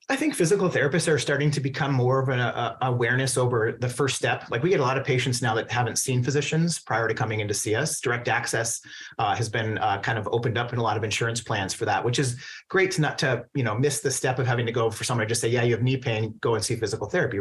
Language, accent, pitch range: English, American, 115-135 Hz